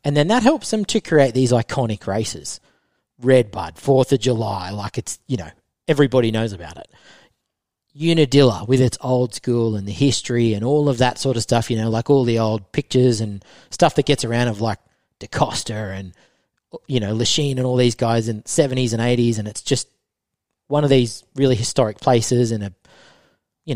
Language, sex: English, male